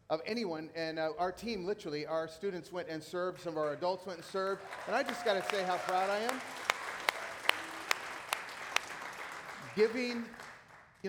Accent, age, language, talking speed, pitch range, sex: American, 40-59, English, 160 wpm, 160-225 Hz, male